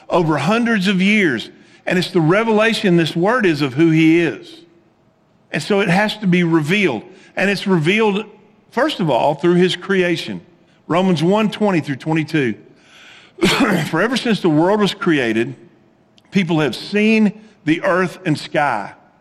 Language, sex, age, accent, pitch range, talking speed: English, male, 50-69, American, 160-210 Hz, 155 wpm